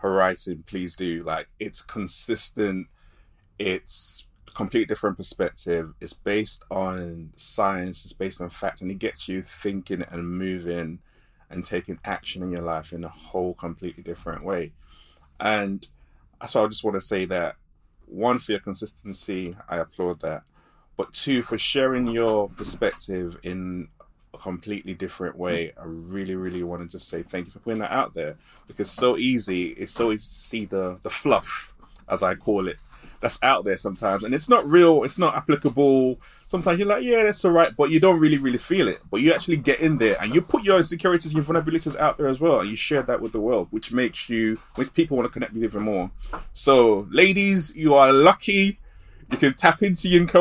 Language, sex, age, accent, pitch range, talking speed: English, male, 20-39, British, 90-150 Hz, 195 wpm